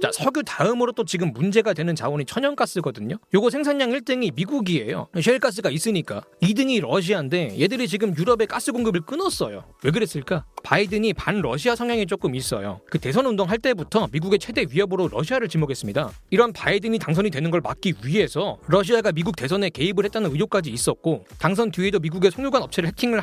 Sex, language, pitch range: male, Korean, 165-235 Hz